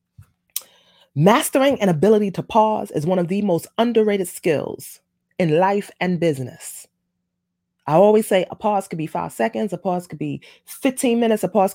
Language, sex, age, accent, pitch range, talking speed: English, female, 30-49, American, 165-215 Hz, 170 wpm